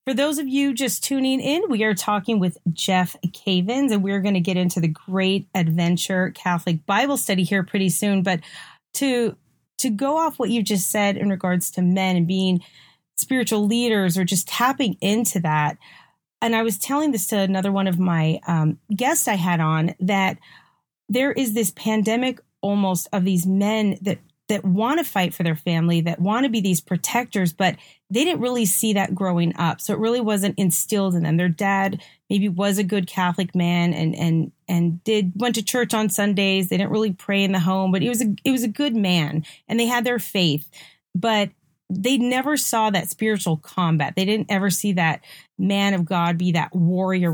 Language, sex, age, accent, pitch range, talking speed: English, female, 30-49, American, 175-220 Hz, 200 wpm